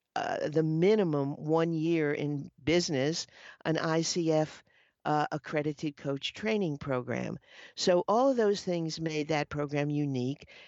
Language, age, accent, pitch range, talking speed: English, 50-69, American, 150-180 Hz, 130 wpm